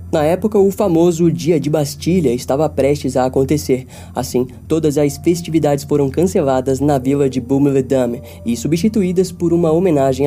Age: 20-39